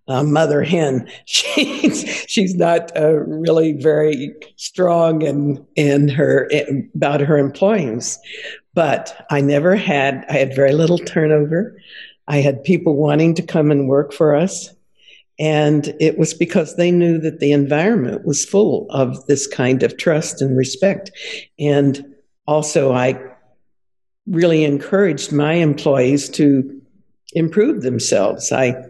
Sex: female